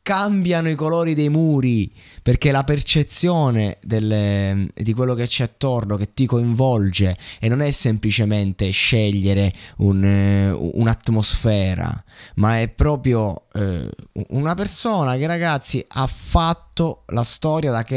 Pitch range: 100-135 Hz